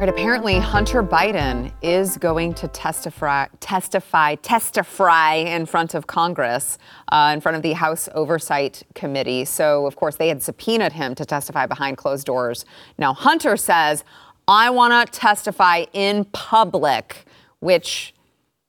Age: 30-49